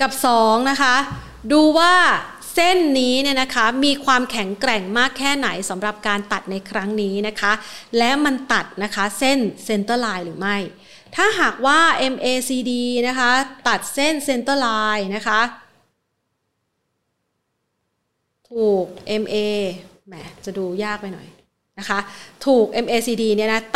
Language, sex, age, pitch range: Thai, female, 30-49, 205-260 Hz